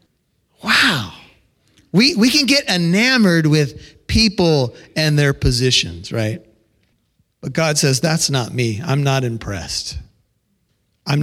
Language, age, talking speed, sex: English, 40-59, 120 wpm, male